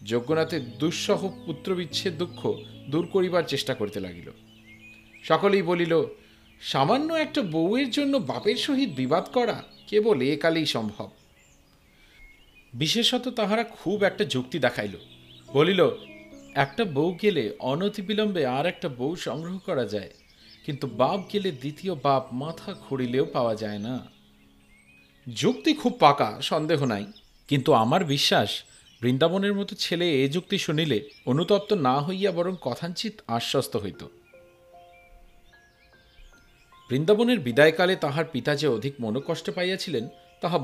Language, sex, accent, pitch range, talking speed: Bengali, male, native, 125-195 Hz, 120 wpm